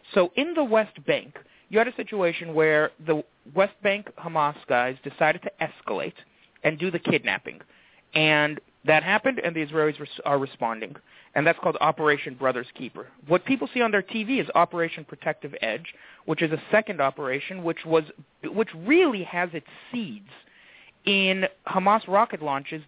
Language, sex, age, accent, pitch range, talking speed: English, male, 40-59, American, 150-205 Hz, 165 wpm